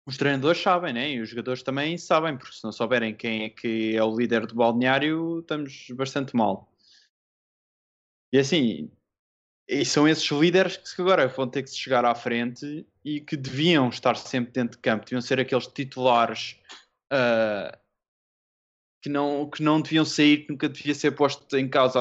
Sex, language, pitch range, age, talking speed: male, Portuguese, 115-150 Hz, 20-39, 175 wpm